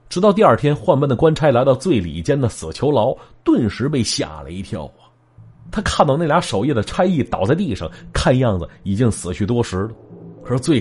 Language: Chinese